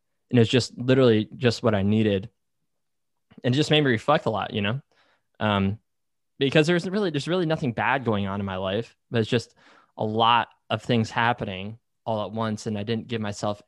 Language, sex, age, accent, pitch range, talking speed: English, male, 20-39, American, 100-115 Hz, 205 wpm